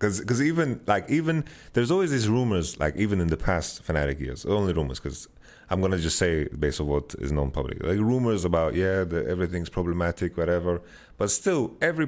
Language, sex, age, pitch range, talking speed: English, male, 30-49, 75-105 Hz, 195 wpm